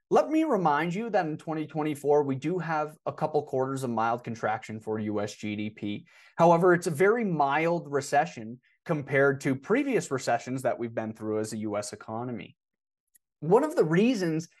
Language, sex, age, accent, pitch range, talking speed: English, male, 30-49, American, 135-210 Hz, 170 wpm